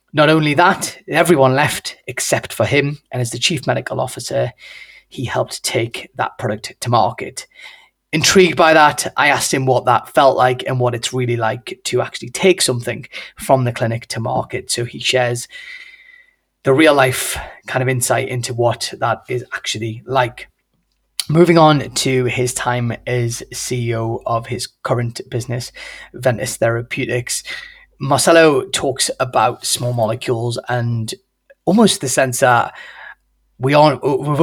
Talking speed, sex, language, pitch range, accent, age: 145 wpm, male, English, 115-135 Hz, British, 20-39